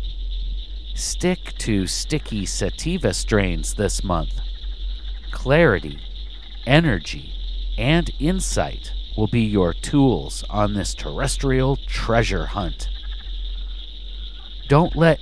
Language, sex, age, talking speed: English, male, 50-69, 85 wpm